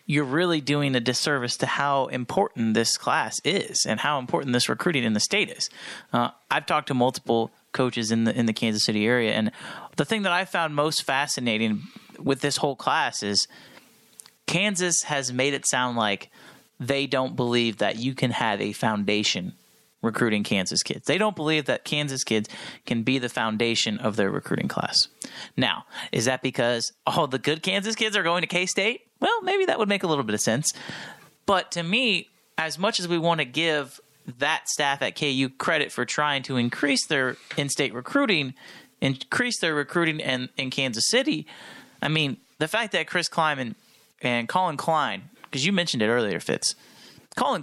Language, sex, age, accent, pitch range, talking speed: English, male, 30-49, American, 125-170 Hz, 185 wpm